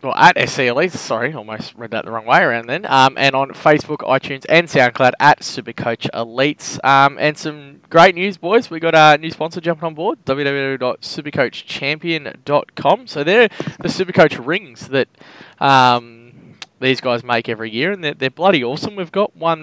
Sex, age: male, 10-29